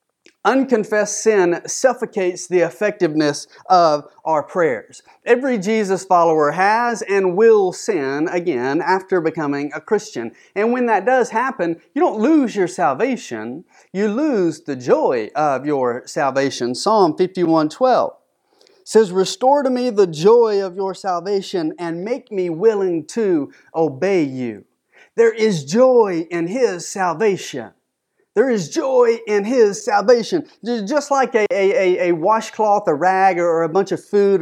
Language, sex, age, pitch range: English, male, 30-49, 175-240 Hz